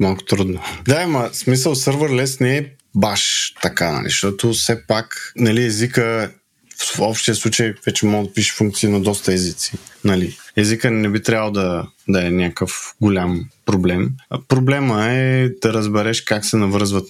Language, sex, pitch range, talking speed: Bulgarian, male, 95-115 Hz, 165 wpm